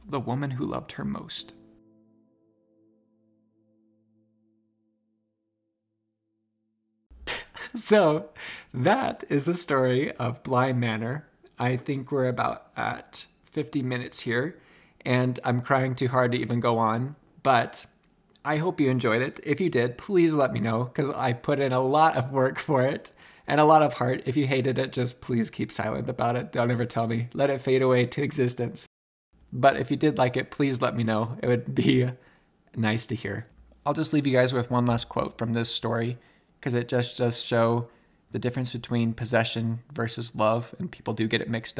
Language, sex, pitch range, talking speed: English, male, 110-135 Hz, 180 wpm